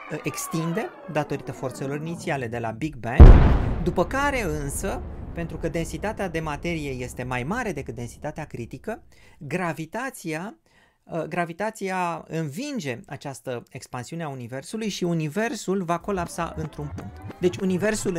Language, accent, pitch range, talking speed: Romanian, native, 130-185 Hz, 120 wpm